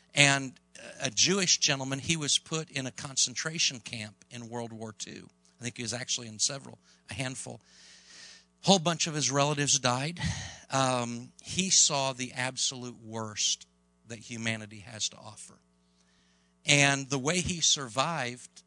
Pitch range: 110-145 Hz